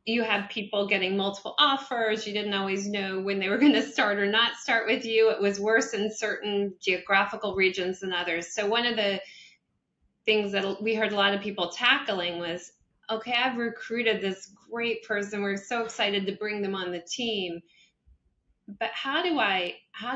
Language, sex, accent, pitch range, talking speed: English, female, American, 185-220 Hz, 190 wpm